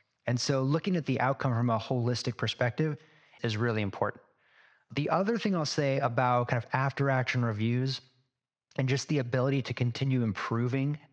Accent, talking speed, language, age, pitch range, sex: American, 165 wpm, English, 30-49, 120-145 Hz, male